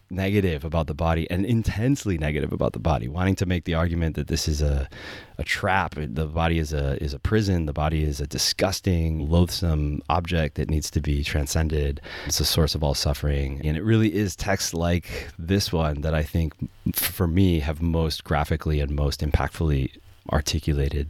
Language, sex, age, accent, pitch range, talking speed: English, male, 30-49, American, 75-90 Hz, 190 wpm